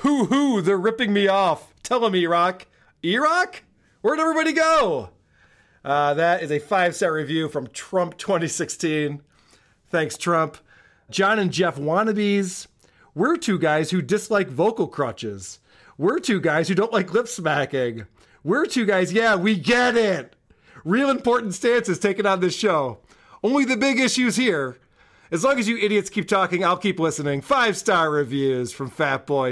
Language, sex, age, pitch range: English, male, 40-59, 140-205 Hz